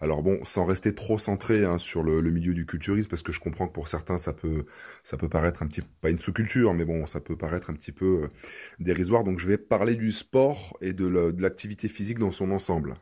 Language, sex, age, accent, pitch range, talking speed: French, male, 20-39, French, 85-100 Hz, 245 wpm